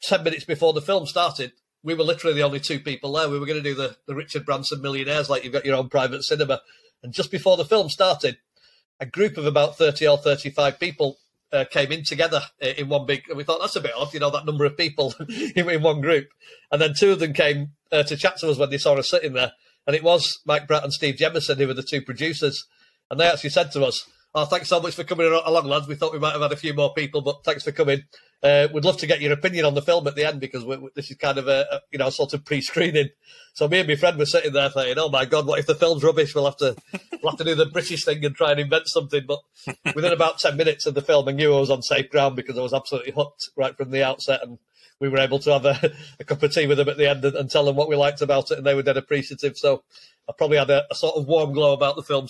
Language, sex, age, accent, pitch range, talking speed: English, male, 40-59, British, 140-165 Hz, 290 wpm